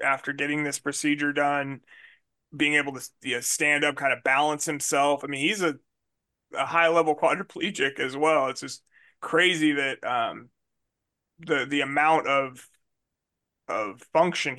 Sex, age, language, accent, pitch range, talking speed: male, 30-49, English, American, 140-160 Hz, 150 wpm